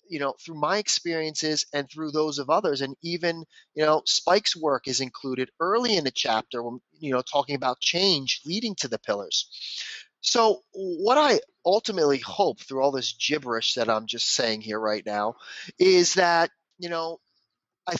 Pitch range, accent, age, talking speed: 145-215 Hz, American, 30-49, 175 wpm